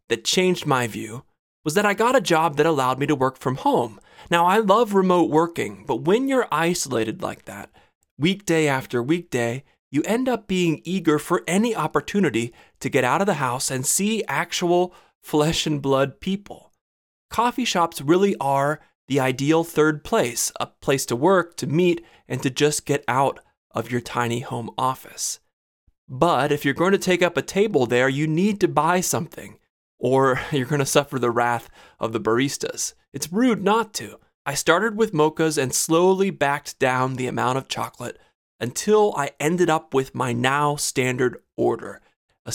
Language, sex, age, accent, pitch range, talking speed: English, male, 30-49, American, 130-180 Hz, 175 wpm